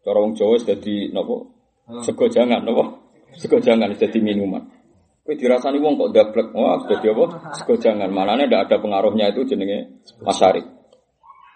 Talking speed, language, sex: 135 wpm, Indonesian, male